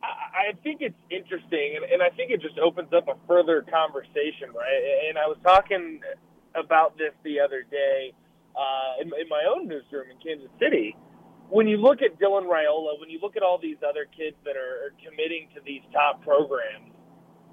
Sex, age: male, 30-49